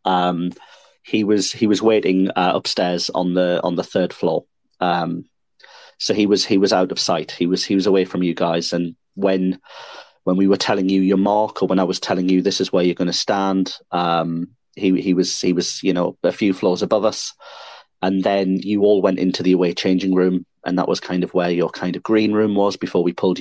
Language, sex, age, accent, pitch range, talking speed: English, male, 30-49, British, 90-100 Hz, 230 wpm